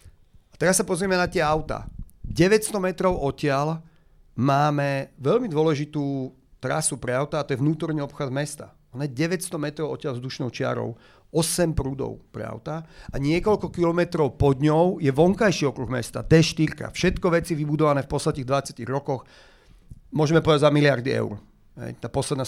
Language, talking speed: Slovak, 150 wpm